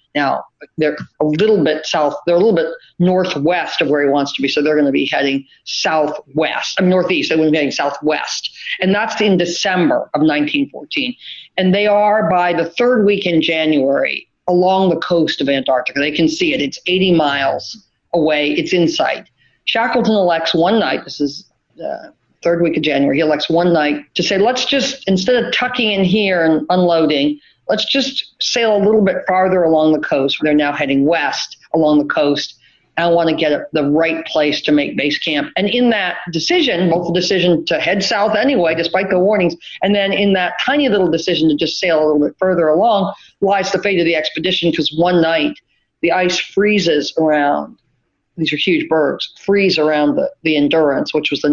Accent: American